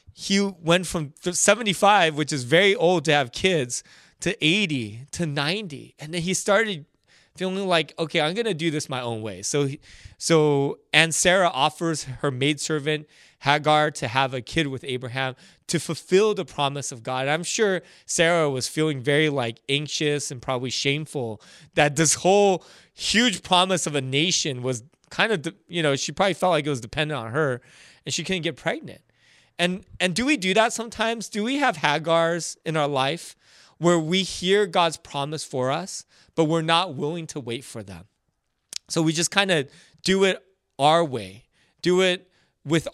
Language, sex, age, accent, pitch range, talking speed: English, male, 20-39, American, 135-180 Hz, 185 wpm